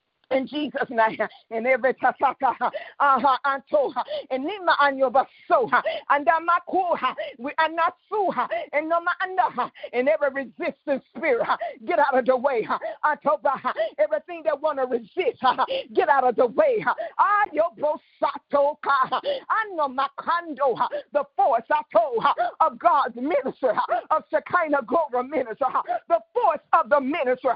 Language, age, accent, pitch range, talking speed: English, 50-69, American, 275-360 Hz, 125 wpm